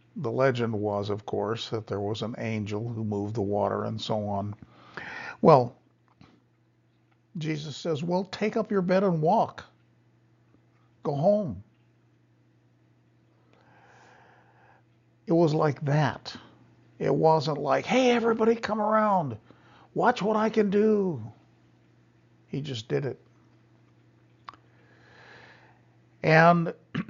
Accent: American